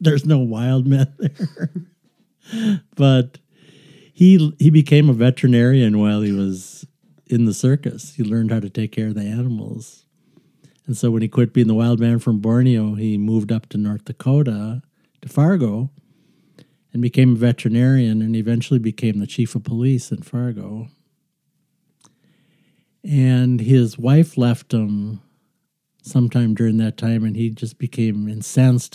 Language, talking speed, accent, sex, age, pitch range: English, 150 wpm, American, male, 60-79, 110-140 Hz